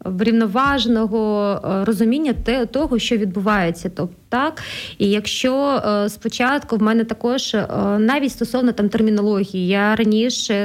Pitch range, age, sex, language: 210-240 Hz, 30-49, female, Ukrainian